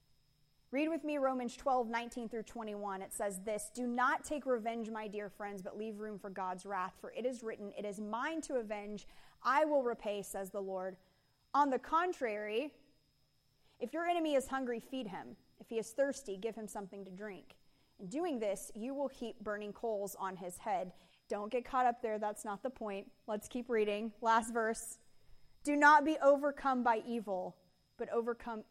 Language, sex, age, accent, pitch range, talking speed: English, female, 30-49, American, 205-255 Hz, 190 wpm